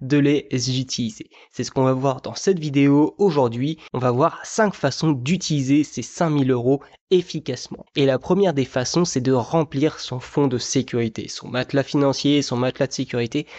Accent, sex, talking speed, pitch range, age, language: French, male, 180 wpm, 130-165 Hz, 20-39, French